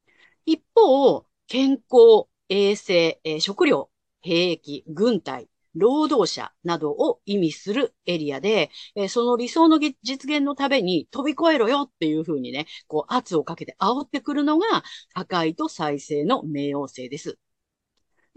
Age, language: 40-59, Japanese